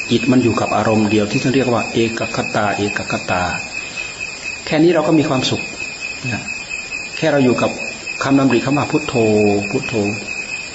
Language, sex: Thai, male